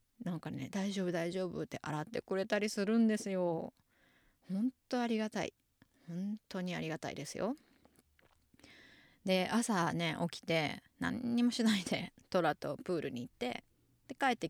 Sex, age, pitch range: female, 20-39, 165-235 Hz